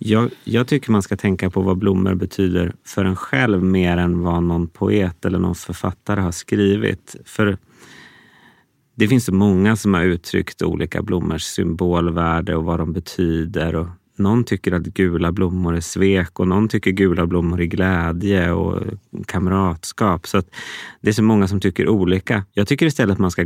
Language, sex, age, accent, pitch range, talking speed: Swedish, male, 30-49, native, 90-105 Hz, 180 wpm